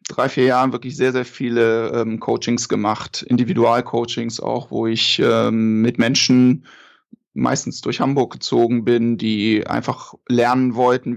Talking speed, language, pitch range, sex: 140 wpm, German, 120-140 Hz, male